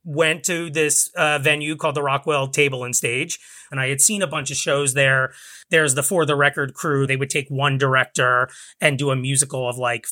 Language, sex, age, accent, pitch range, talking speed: English, male, 30-49, American, 130-170 Hz, 220 wpm